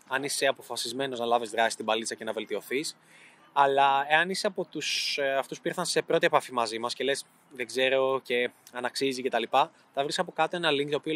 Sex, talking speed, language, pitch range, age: male, 220 wpm, Greek, 135-170 Hz, 20-39